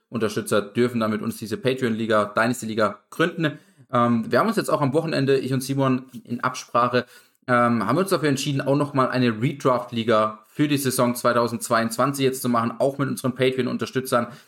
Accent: German